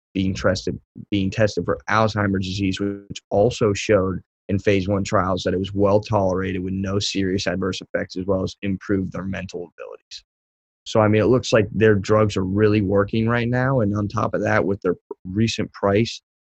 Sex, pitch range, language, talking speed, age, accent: male, 95-105 Hz, English, 185 wpm, 20-39, American